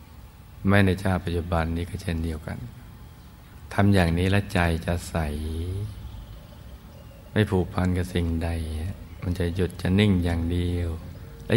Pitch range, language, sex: 85-100 Hz, Thai, male